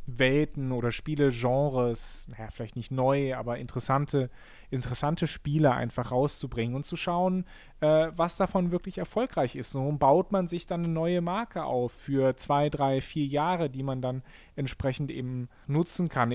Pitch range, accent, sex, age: 130-165 Hz, German, male, 30-49